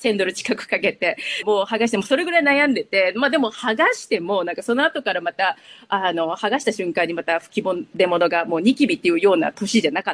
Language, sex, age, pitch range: Japanese, female, 40-59, 205-315 Hz